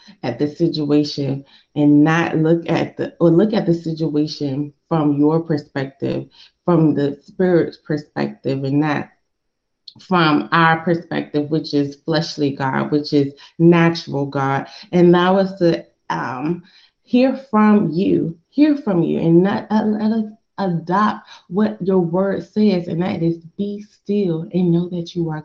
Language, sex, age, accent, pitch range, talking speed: English, female, 20-39, American, 150-180 Hz, 150 wpm